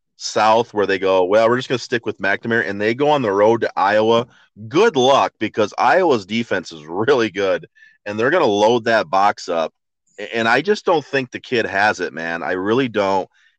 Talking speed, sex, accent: 215 wpm, male, American